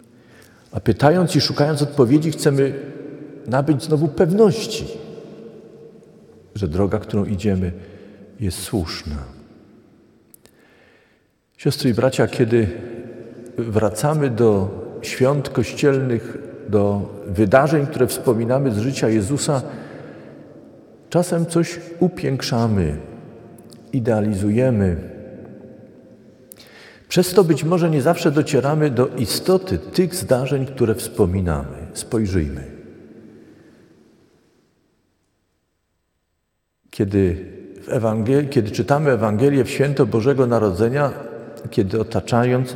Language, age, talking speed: Polish, 50-69, 85 wpm